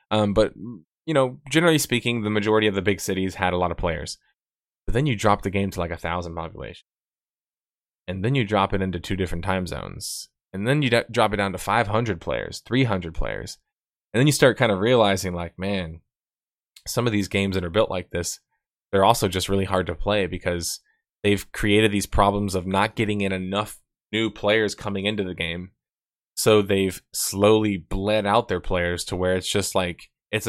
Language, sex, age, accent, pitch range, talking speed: English, male, 20-39, American, 95-105 Hz, 205 wpm